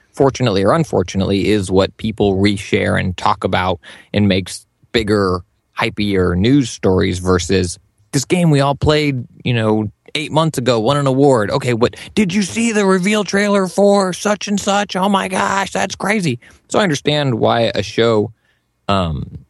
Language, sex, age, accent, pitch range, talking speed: English, male, 20-39, American, 100-130 Hz, 165 wpm